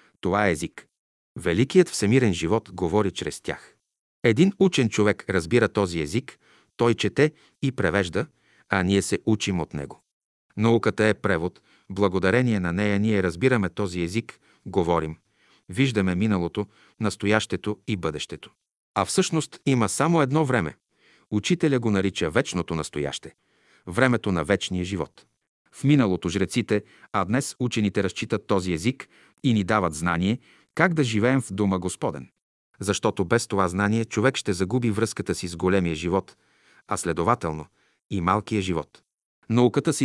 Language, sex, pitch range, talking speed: Bulgarian, male, 95-130 Hz, 140 wpm